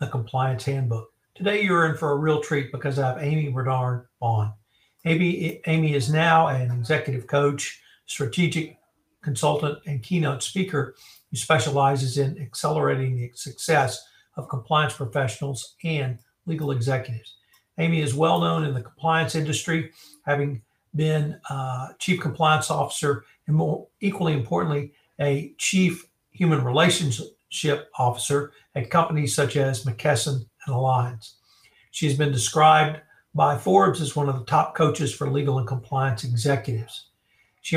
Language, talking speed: English, 140 wpm